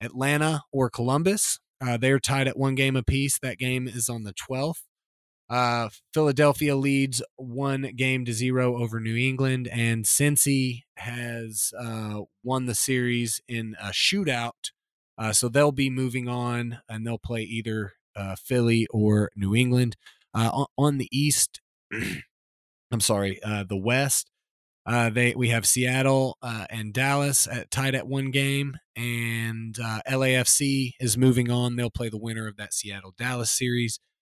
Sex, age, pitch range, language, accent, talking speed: male, 20-39, 110-130 Hz, English, American, 155 wpm